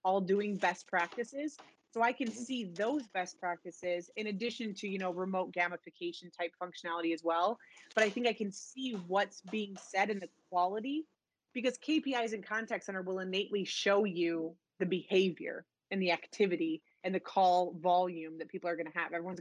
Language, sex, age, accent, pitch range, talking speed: English, female, 20-39, American, 175-210 Hz, 180 wpm